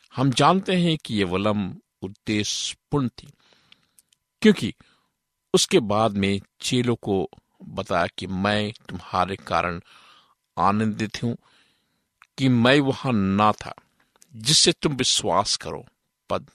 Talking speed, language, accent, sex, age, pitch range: 85 wpm, Hindi, native, male, 50-69, 100-145 Hz